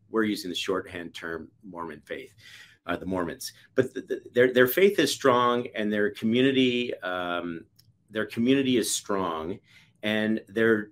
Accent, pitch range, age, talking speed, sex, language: American, 100-125 Hz, 40-59, 155 wpm, male, English